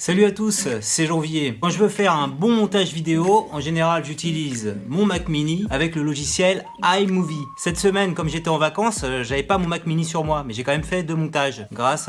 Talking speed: 220 wpm